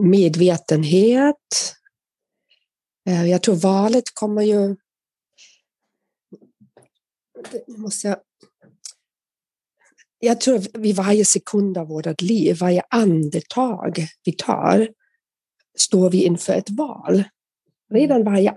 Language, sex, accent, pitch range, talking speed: Swedish, female, native, 180-235 Hz, 90 wpm